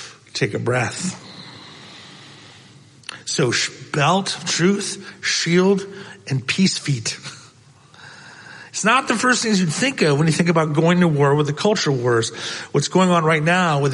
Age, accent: 40-59, American